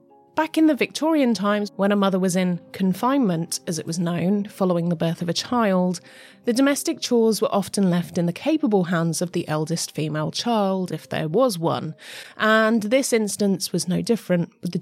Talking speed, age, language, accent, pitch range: 195 wpm, 20-39, English, British, 165-230 Hz